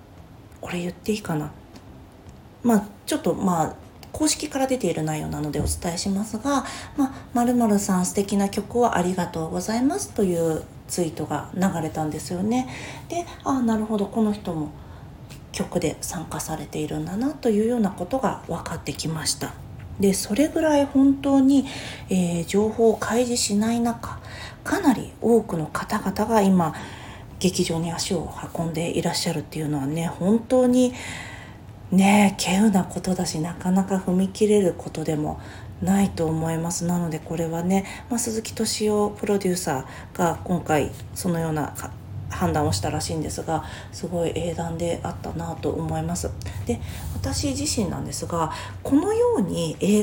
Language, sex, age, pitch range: Japanese, female, 40-59, 155-220 Hz